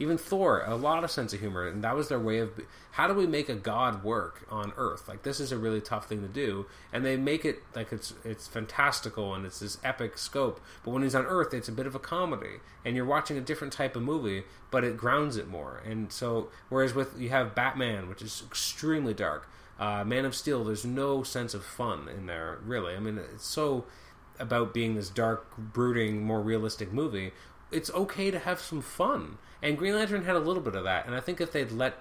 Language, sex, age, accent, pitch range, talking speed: English, male, 30-49, American, 110-150 Hz, 235 wpm